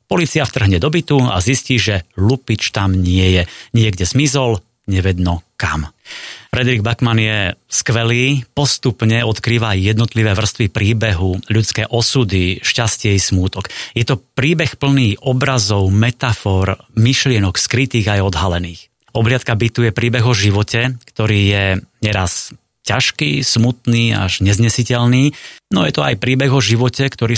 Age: 30-49